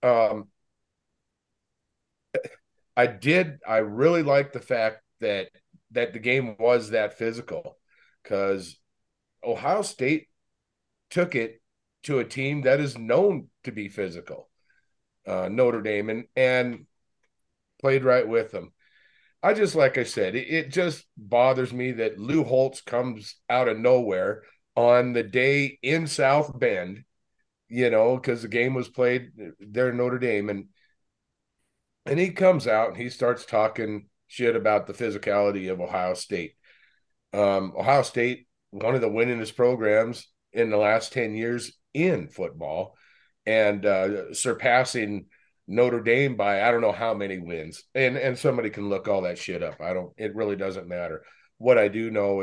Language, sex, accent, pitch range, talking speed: English, male, American, 105-130 Hz, 155 wpm